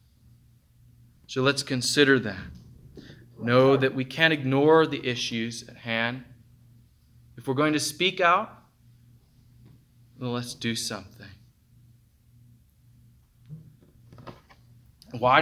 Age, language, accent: 20-39, English, American